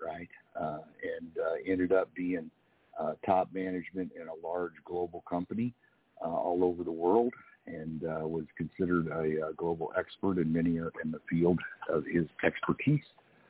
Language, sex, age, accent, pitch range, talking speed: English, male, 60-79, American, 80-95 Hz, 160 wpm